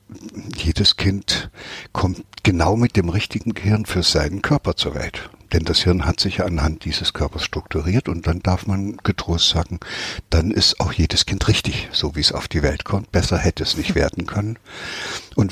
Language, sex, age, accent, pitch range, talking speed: German, male, 60-79, German, 80-100 Hz, 185 wpm